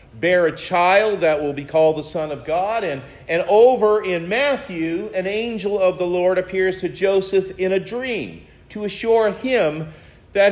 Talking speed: 175 wpm